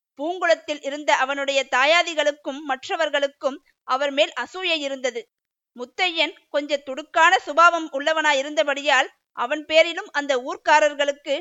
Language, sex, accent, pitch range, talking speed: Tamil, female, native, 270-320 Hz, 95 wpm